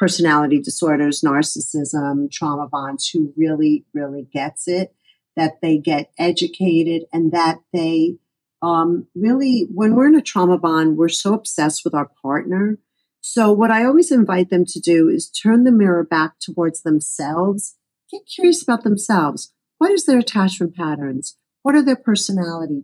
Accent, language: American, English